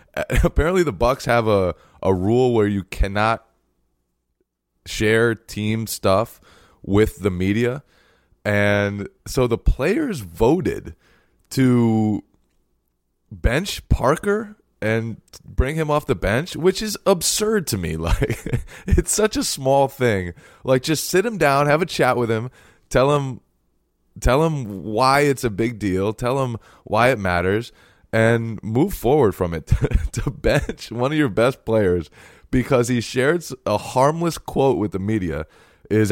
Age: 20-39